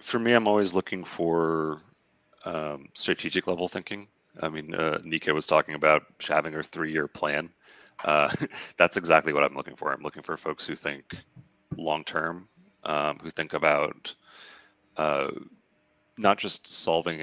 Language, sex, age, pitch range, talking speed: English, male, 30-49, 75-90 Hz, 145 wpm